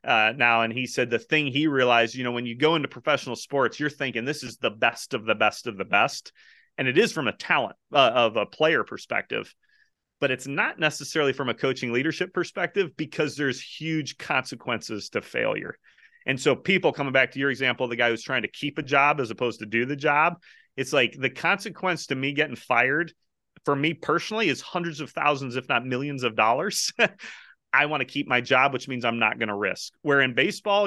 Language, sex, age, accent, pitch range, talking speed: English, male, 30-49, American, 125-160 Hz, 220 wpm